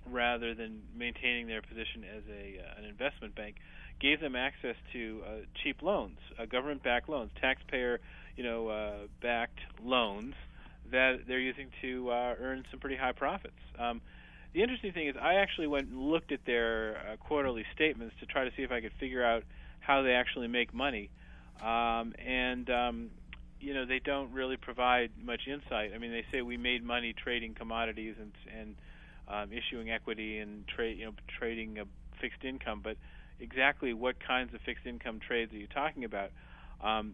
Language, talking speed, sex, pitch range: English, 185 wpm, male, 110-130 Hz